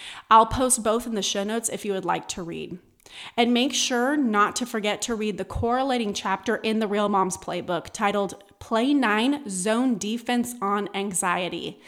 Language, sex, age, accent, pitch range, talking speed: English, female, 30-49, American, 200-245 Hz, 180 wpm